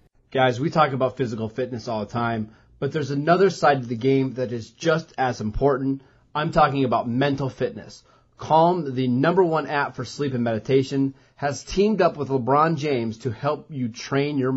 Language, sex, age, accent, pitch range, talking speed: English, male, 30-49, American, 125-145 Hz, 190 wpm